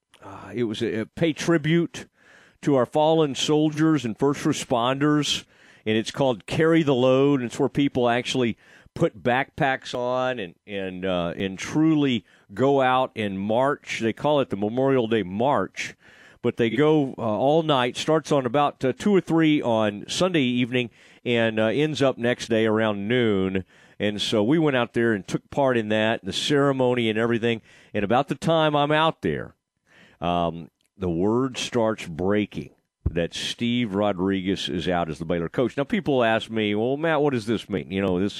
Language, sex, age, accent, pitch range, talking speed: English, male, 40-59, American, 105-140 Hz, 185 wpm